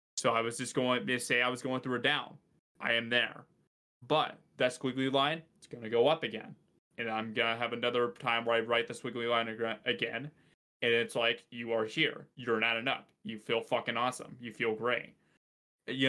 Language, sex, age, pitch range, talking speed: English, male, 20-39, 115-130 Hz, 215 wpm